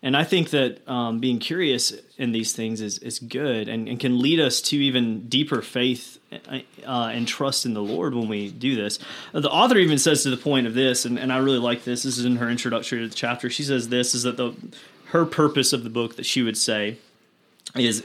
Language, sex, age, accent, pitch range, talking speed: English, male, 30-49, American, 120-140 Hz, 235 wpm